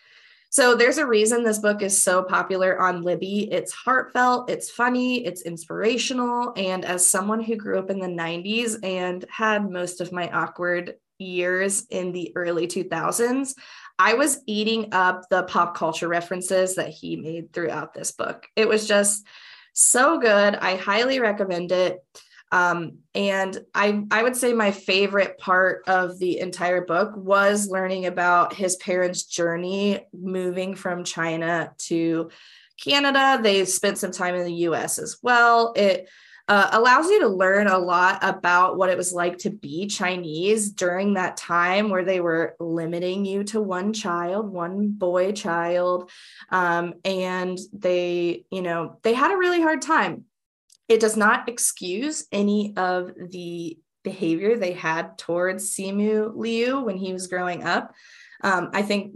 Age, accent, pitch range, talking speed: 20-39, American, 180-215 Hz, 160 wpm